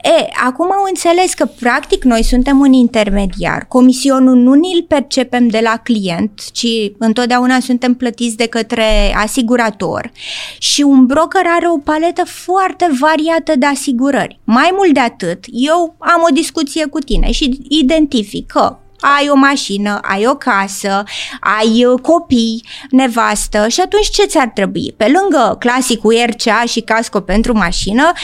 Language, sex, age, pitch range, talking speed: Romanian, female, 20-39, 225-295 Hz, 150 wpm